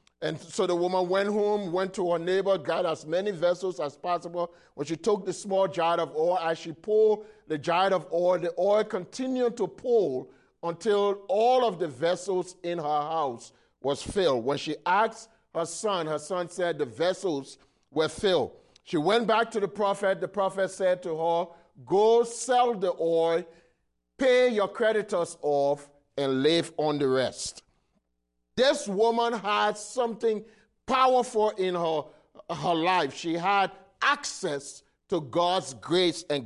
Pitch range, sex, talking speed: 165-215 Hz, male, 160 wpm